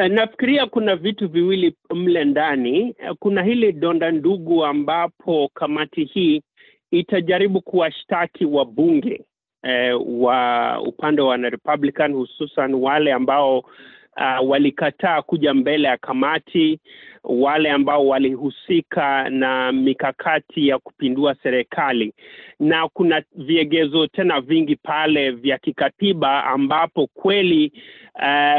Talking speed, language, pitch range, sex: 105 wpm, Swahili, 140-185 Hz, male